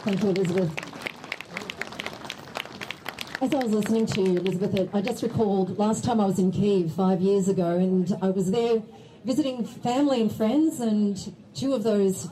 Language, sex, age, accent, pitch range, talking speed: Ukrainian, female, 40-59, Australian, 175-220 Hz, 165 wpm